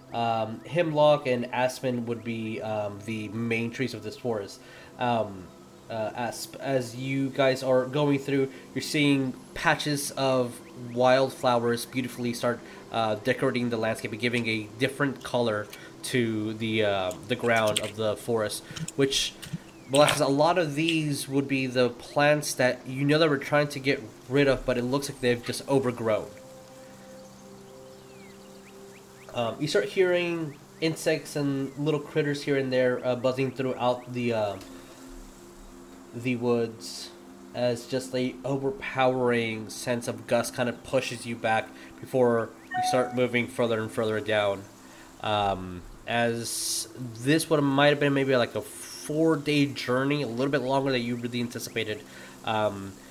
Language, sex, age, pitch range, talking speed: English, male, 20-39, 110-135 Hz, 150 wpm